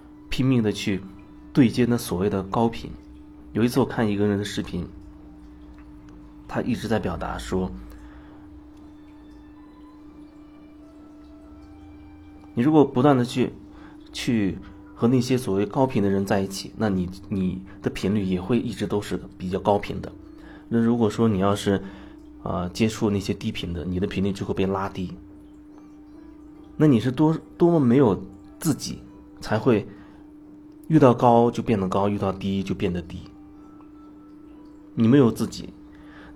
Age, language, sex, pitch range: 30-49, Chinese, male, 95-130 Hz